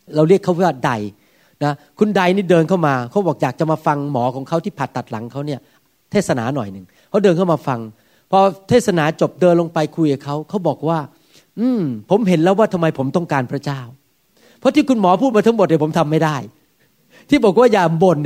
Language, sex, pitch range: Thai, male, 150-220 Hz